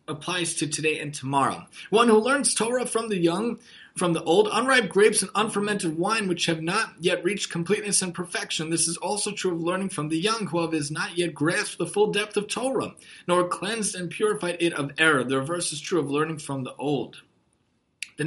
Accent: American